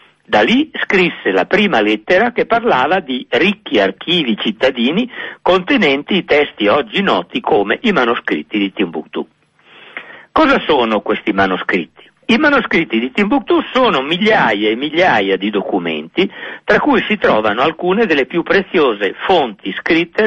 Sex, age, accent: male, 50-69, native